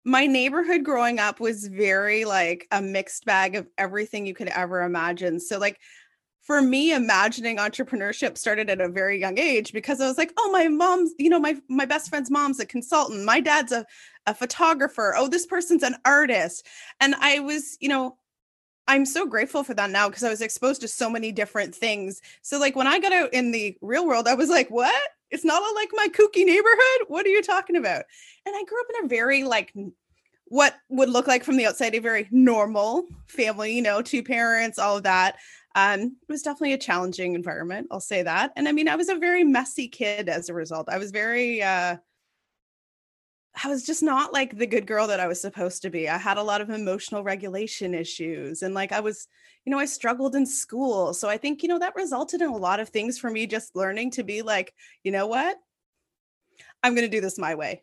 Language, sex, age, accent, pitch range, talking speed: English, female, 20-39, American, 200-285 Hz, 220 wpm